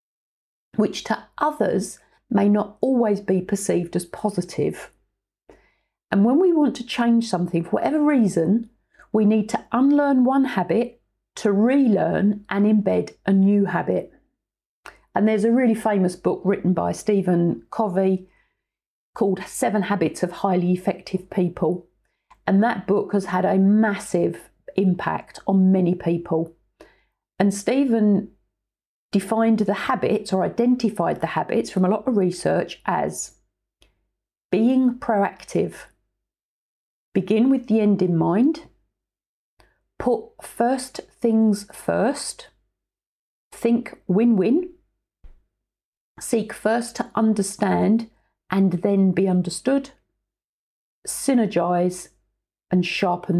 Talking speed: 115 wpm